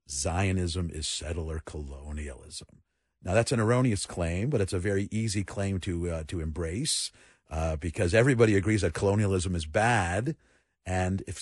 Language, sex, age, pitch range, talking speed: English, male, 50-69, 80-105 Hz, 150 wpm